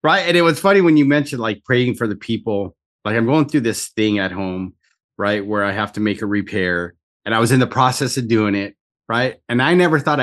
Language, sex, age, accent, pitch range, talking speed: English, male, 30-49, American, 105-140 Hz, 250 wpm